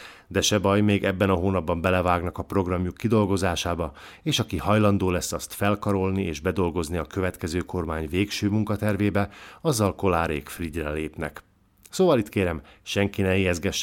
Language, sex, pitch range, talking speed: Hungarian, male, 85-105 Hz, 145 wpm